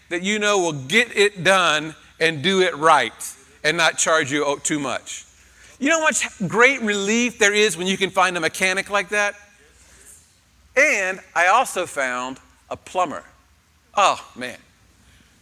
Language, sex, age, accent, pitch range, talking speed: English, male, 40-59, American, 180-235 Hz, 160 wpm